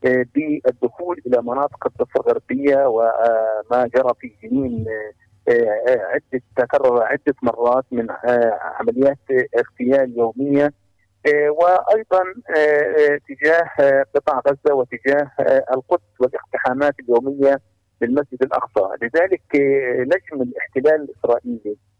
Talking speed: 85 wpm